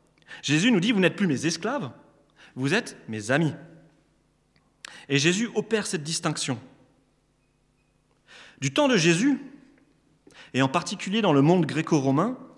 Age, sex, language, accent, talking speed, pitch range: 30-49, male, French, French, 135 wpm, 130-200 Hz